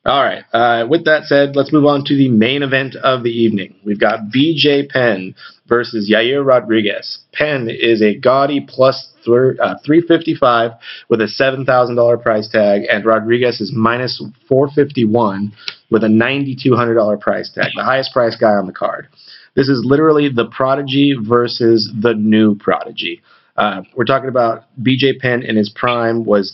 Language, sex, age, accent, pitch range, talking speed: English, male, 30-49, American, 105-125 Hz, 160 wpm